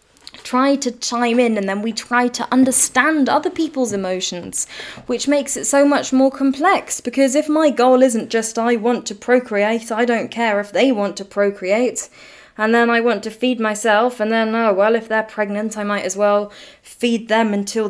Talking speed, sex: 200 wpm, female